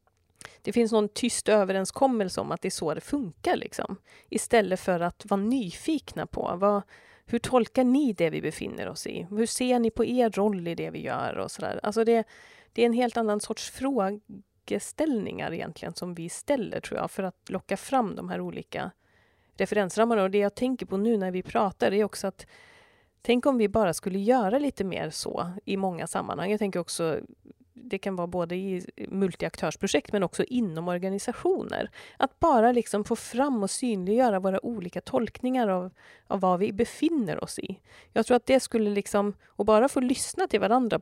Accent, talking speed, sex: native, 190 wpm, female